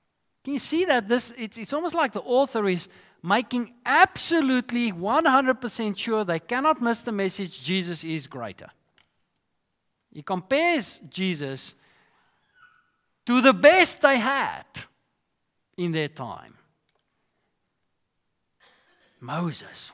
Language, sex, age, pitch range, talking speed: English, male, 50-69, 165-255 Hz, 110 wpm